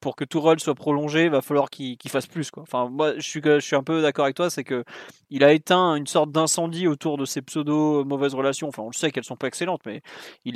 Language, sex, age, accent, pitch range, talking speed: French, male, 20-39, French, 140-180 Hz, 275 wpm